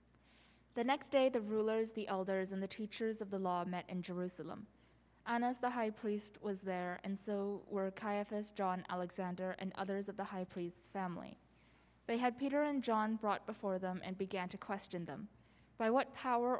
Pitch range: 185-225 Hz